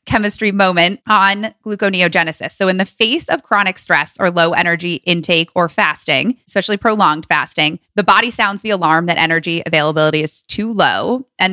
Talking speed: 165 wpm